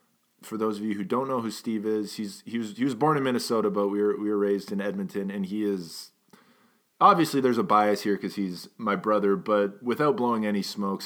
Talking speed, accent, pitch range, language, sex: 235 wpm, American, 100-110 Hz, English, male